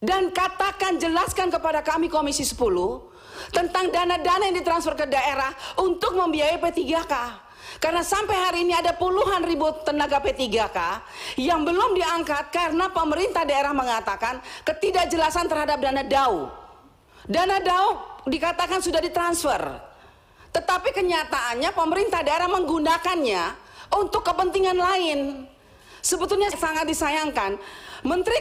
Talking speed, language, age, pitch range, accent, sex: 110 wpm, Indonesian, 40-59, 315-375 Hz, native, female